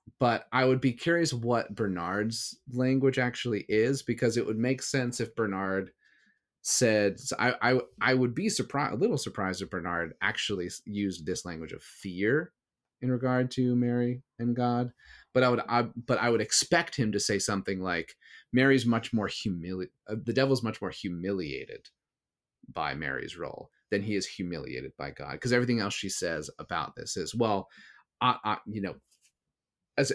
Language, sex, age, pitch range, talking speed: English, male, 30-49, 95-125 Hz, 170 wpm